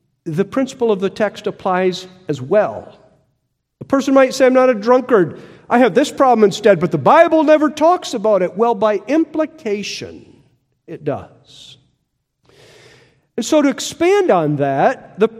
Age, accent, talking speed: 50-69, American, 155 wpm